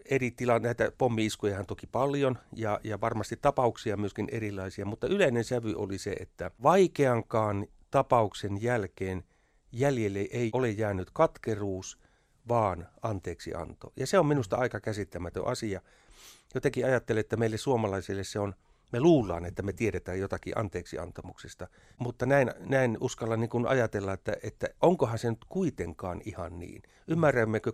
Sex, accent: male, native